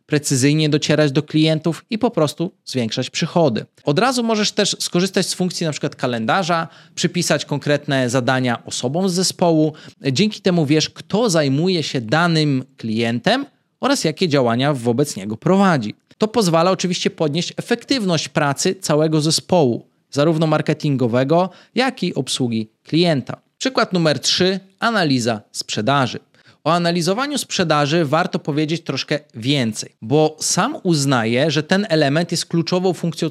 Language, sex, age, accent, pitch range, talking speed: Polish, male, 20-39, native, 140-185 Hz, 130 wpm